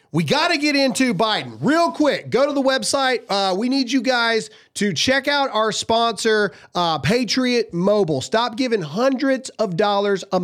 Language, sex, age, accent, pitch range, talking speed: English, male, 40-59, American, 195-265 Hz, 180 wpm